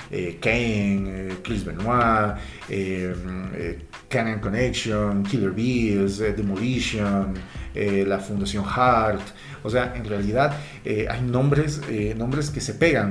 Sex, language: male, Spanish